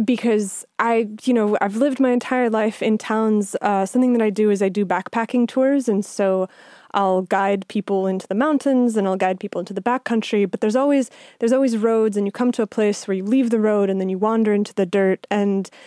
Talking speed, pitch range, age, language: 235 wpm, 205-245 Hz, 20-39, English